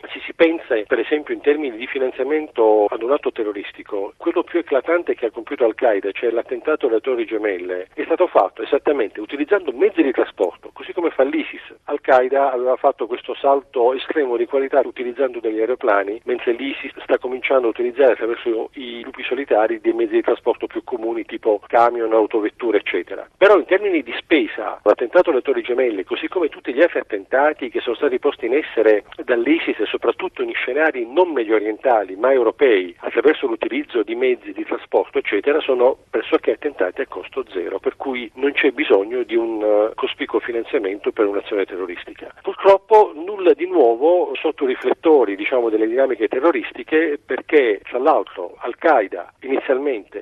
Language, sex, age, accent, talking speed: Italian, male, 50-69, native, 170 wpm